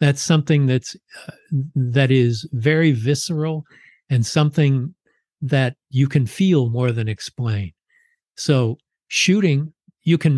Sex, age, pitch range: male, 50-69, 120-150 Hz